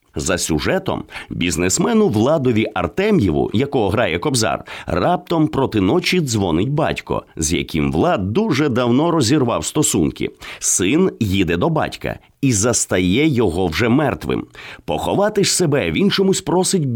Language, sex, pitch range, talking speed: English, male, 115-180 Hz, 125 wpm